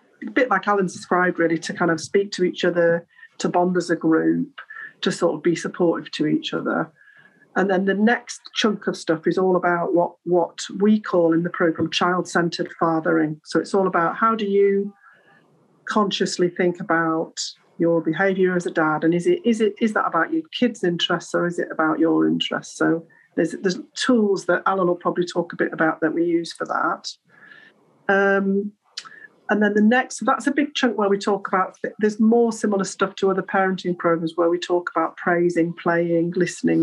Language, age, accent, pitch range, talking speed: English, 40-59, British, 165-200 Hz, 195 wpm